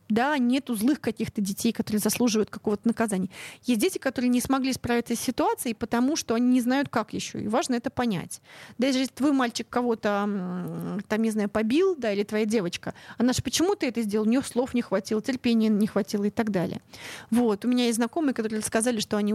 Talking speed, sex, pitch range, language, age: 205 wpm, female, 215-265 Hz, Russian, 30-49